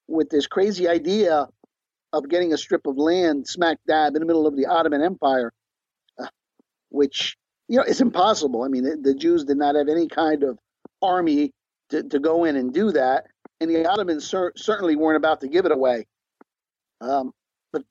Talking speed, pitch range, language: 190 wpm, 135-185 Hz, English